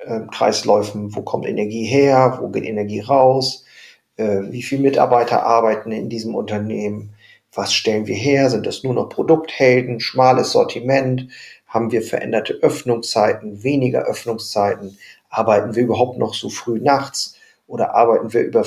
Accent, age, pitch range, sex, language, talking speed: German, 40-59, 110-145 Hz, male, German, 140 wpm